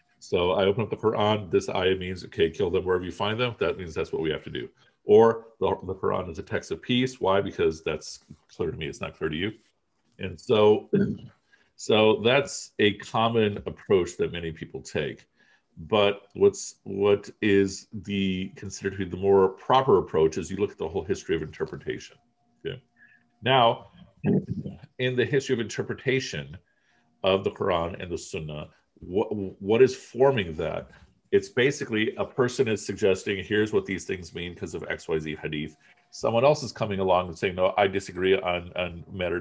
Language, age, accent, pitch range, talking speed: English, 50-69, American, 95-125 Hz, 185 wpm